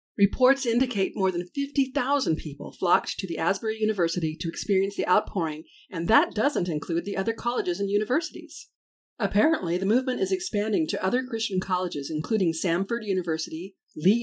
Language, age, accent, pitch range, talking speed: English, 50-69, American, 175-235 Hz, 155 wpm